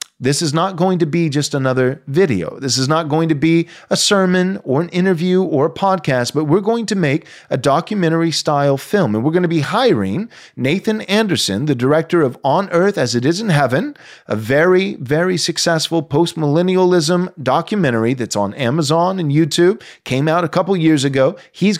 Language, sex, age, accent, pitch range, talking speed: English, male, 30-49, American, 130-180 Hz, 190 wpm